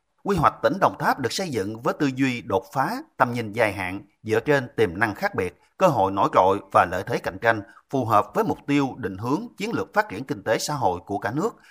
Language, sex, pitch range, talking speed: Vietnamese, male, 110-150 Hz, 255 wpm